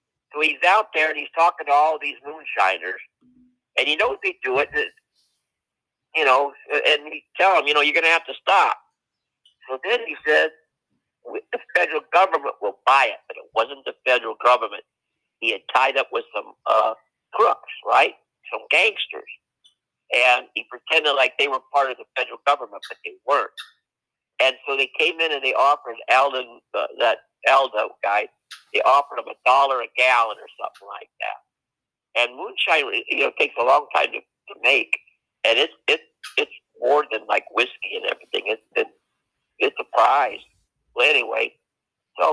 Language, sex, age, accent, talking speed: English, male, 50-69, American, 175 wpm